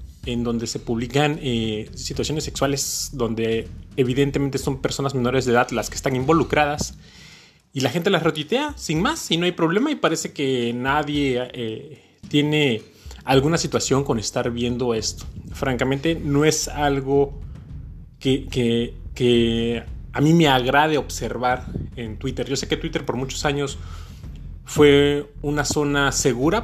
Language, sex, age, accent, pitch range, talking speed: Spanish, male, 30-49, Mexican, 115-150 Hz, 150 wpm